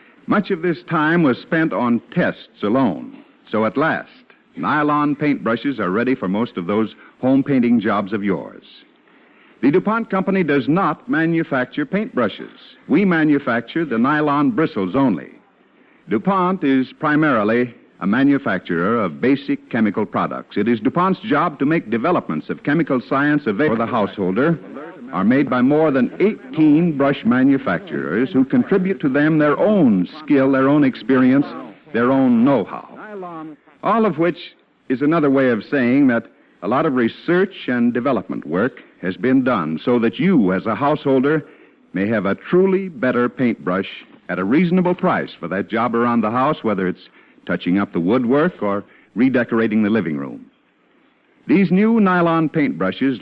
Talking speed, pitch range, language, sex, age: 155 wpm, 120-185 Hz, English, male, 60-79